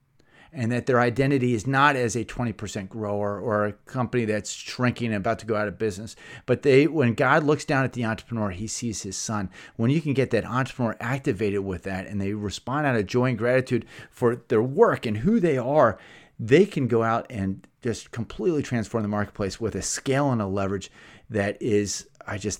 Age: 30-49